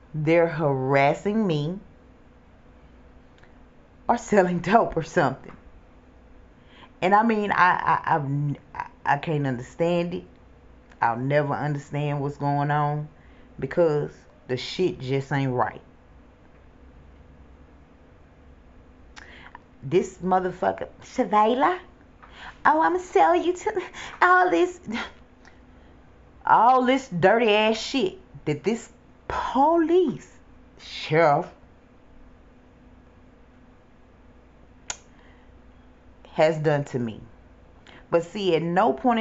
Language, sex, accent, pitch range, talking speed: English, female, American, 125-210 Hz, 90 wpm